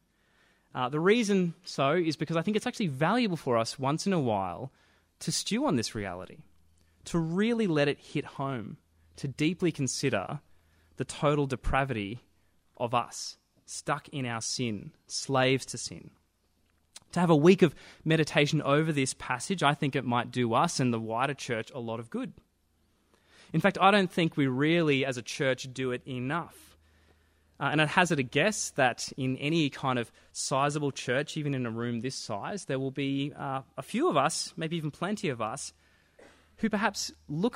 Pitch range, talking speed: 120-165 Hz, 185 wpm